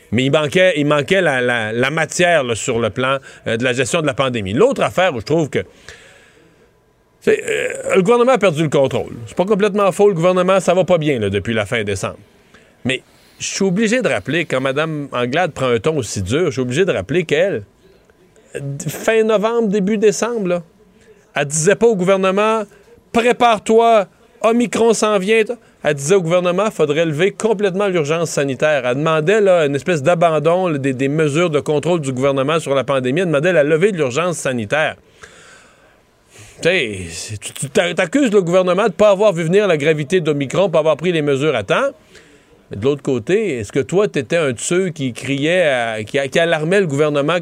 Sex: male